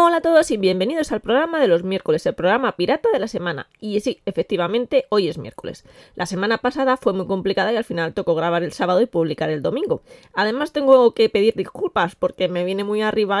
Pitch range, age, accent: 175-220 Hz, 20-39, Spanish